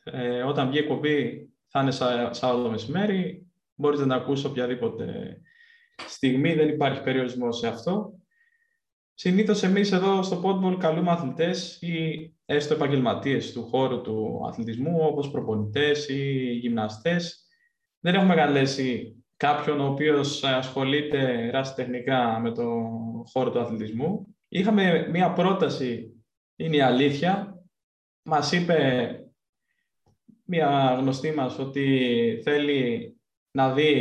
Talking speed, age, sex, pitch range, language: 120 wpm, 20-39, male, 130-175 Hz, Greek